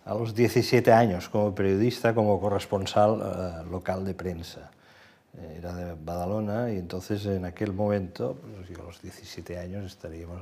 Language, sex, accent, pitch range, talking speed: Spanish, male, Spanish, 90-120 Hz, 155 wpm